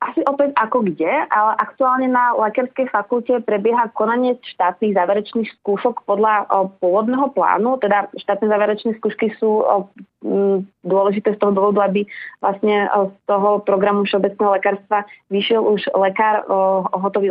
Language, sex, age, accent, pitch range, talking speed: Czech, female, 30-49, native, 200-235 Hz, 150 wpm